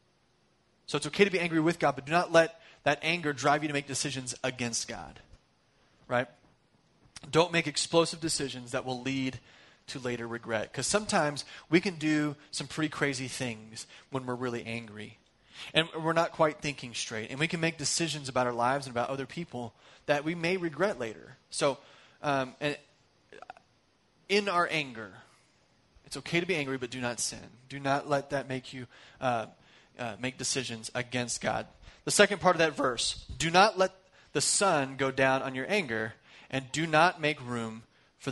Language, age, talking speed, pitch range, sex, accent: English, 30-49, 185 wpm, 125-155 Hz, male, American